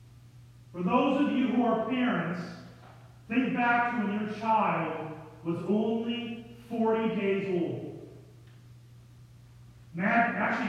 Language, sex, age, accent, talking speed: English, male, 40-59, American, 105 wpm